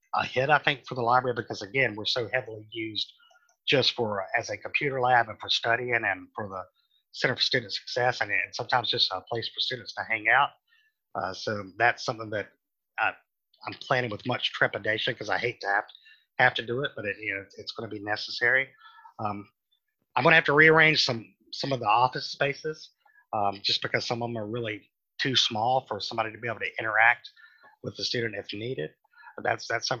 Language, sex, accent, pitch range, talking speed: English, male, American, 110-145 Hz, 205 wpm